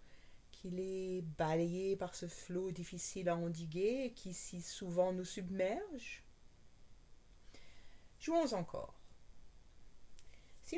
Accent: French